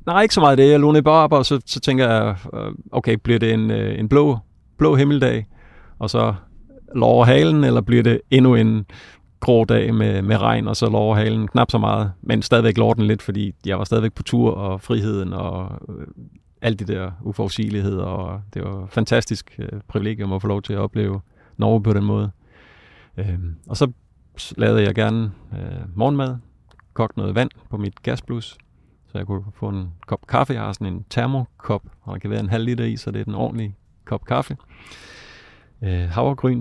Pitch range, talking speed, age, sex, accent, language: 100-115 Hz, 190 wpm, 30-49, male, native, Danish